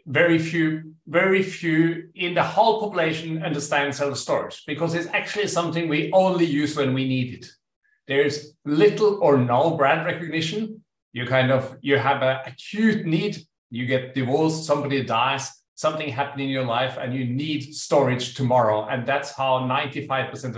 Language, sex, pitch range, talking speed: English, male, 125-160 Hz, 160 wpm